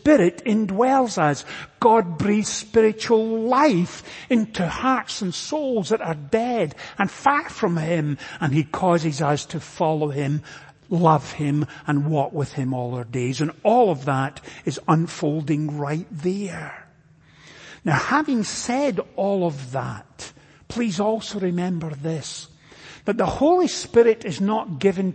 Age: 50-69